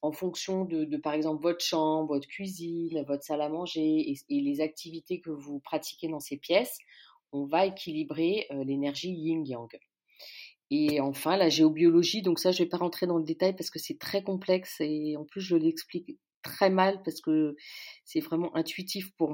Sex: female